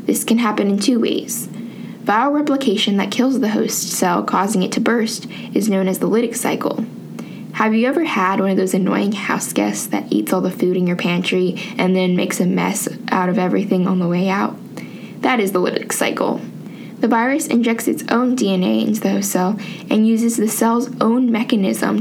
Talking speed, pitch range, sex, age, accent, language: 200 wpm, 195-235 Hz, female, 10-29, American, English